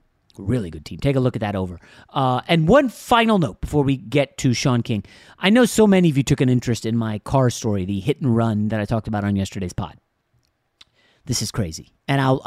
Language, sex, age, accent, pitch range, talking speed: English, male, 30-49, American, 110-150 Hz, 235 wpm